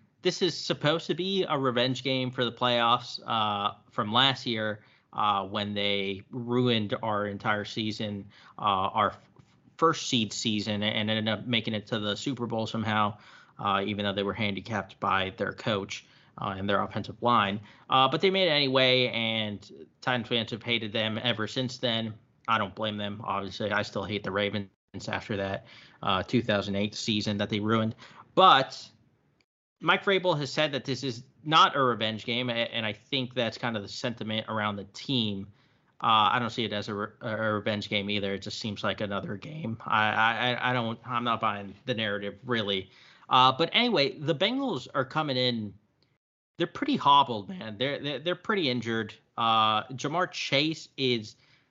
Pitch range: 105-135 Hz